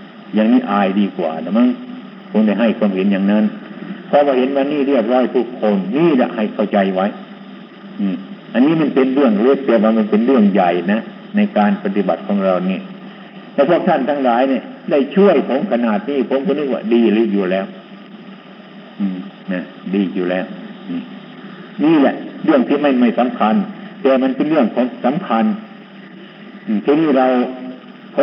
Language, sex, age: Thai, male, 60-79